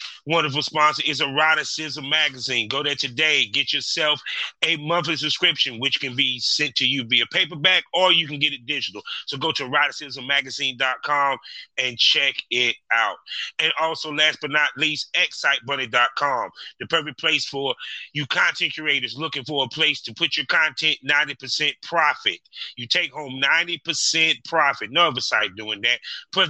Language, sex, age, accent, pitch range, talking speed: English, male, 30-49, American, 135-160 Hz, 160 wpm